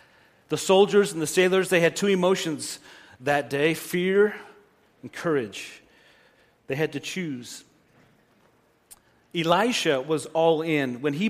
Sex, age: male, 40-59